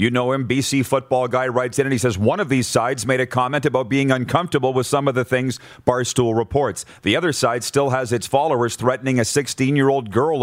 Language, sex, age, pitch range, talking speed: English, male, 40-59, 115-140 Hz, 225 wpm